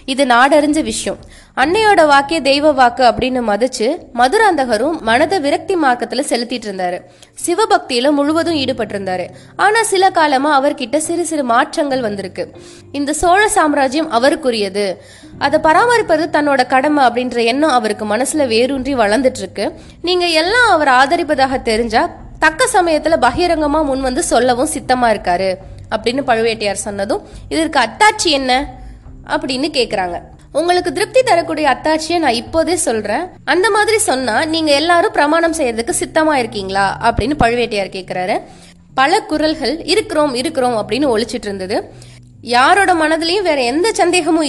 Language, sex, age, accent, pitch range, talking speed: Tamil, female, 20-39, native, 230-325 Hz, 95 wpm